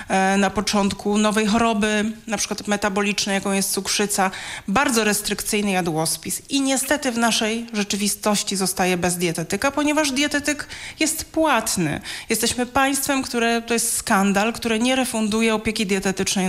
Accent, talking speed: native, 130 wpm